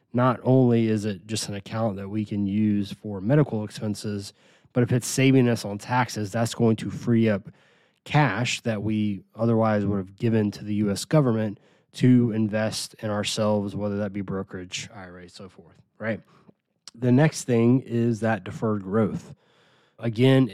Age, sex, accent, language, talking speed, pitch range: 20-39, male, American, English, 170 wpm, 105-120 Hz